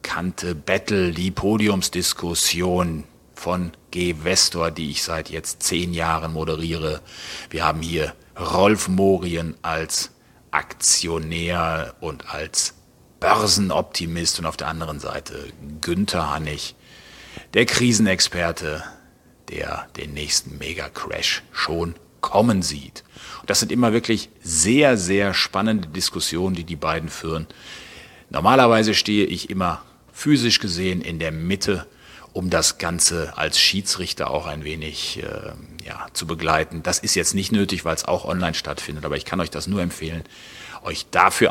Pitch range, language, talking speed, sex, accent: 80-95 Hz, German, 135 wpm, male, German